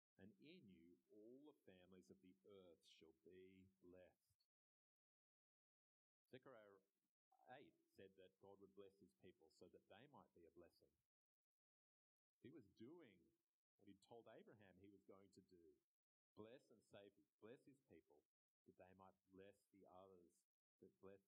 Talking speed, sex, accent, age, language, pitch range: 150 wpm, male, Australian, 40-59, English, 100-165 Hz